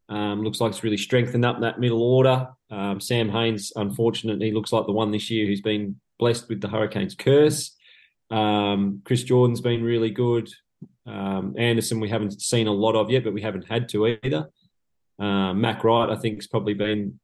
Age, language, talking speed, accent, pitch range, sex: 20-39, English, 195 wpm, Australian, 100-115 Hz, male